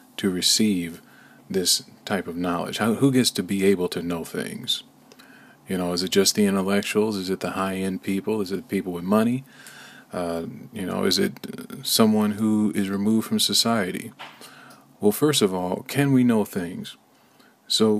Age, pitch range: 40-59, 95-125 Hz